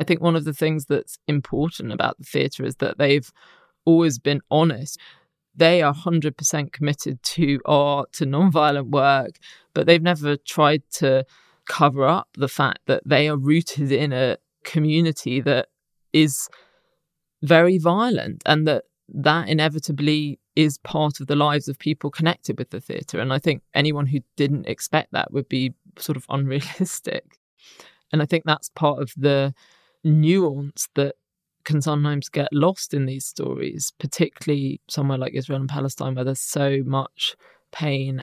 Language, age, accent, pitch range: English, 20-39, British, 135-155 Hz